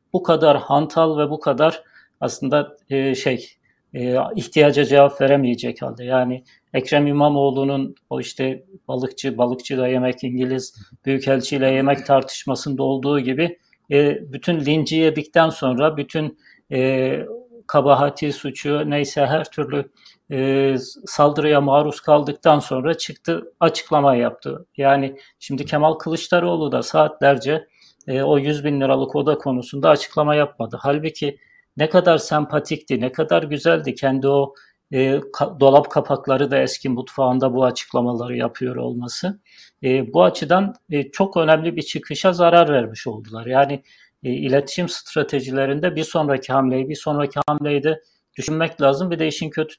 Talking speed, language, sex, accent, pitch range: 130 wpm, Turkish, male, native, 135-155 Hz